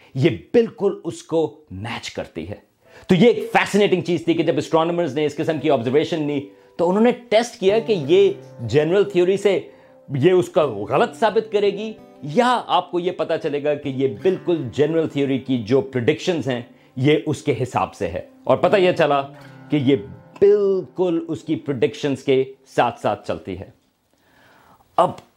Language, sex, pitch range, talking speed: Urdu, male, 135-185 Hz, 175 wpm